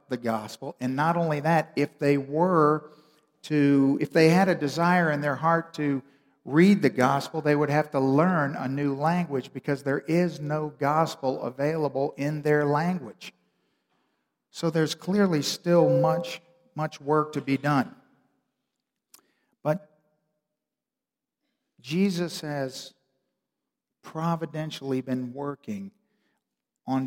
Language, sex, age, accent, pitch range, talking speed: English, male, 50-69, American, 135-165 Hz, 125 wpm